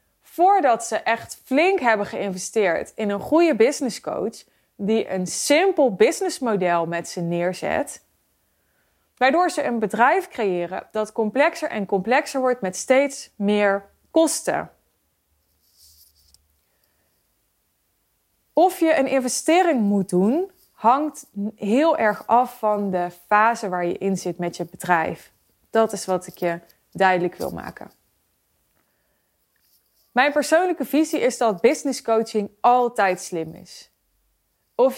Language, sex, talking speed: Dutch, female, 120 wpm